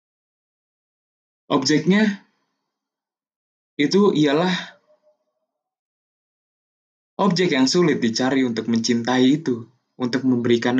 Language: Indonesian